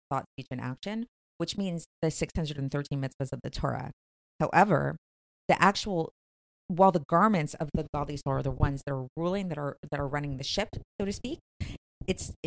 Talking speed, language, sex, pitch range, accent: 190 wpm, English, female, 140-180 Hz, American